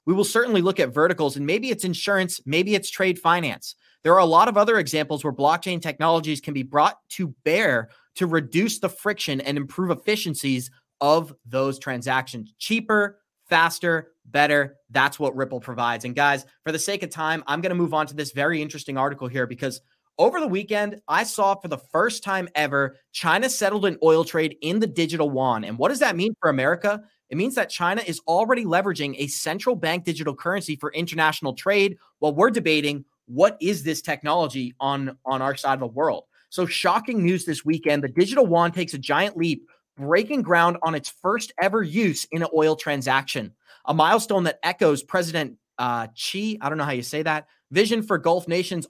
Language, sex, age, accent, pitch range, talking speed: English, male, 30-49, American, 140-190 Hz, 200 wpm